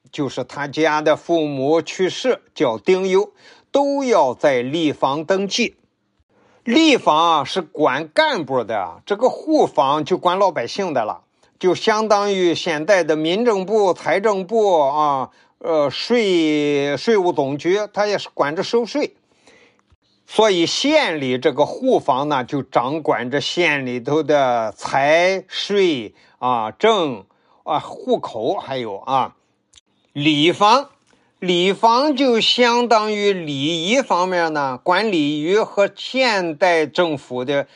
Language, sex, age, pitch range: Chinese, male, 50-69, 150-210 Hz